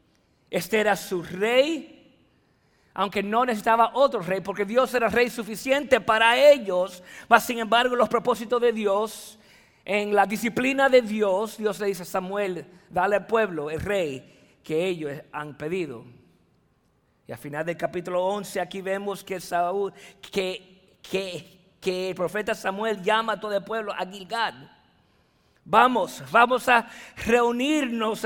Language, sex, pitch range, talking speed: English, male, 195-240 Hz, 150 wpm